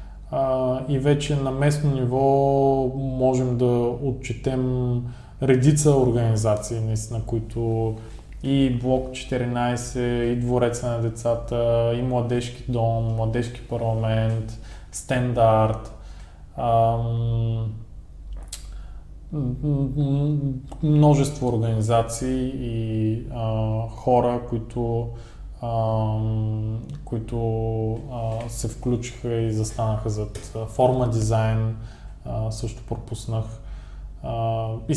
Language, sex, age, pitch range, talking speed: Bulgarian, male, 20-39, 110-130 Hz, 70 wpm